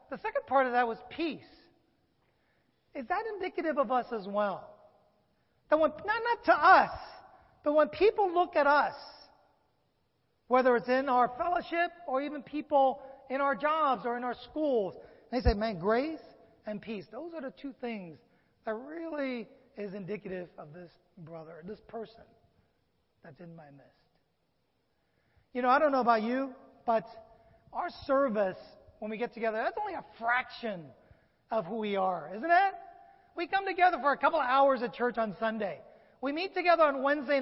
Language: English